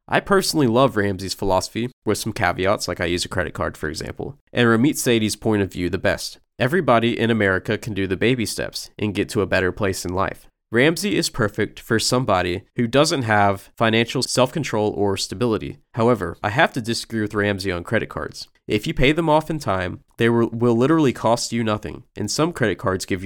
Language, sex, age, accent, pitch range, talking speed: English, male, 20-39, American, 100-125 Hz, 205 wpm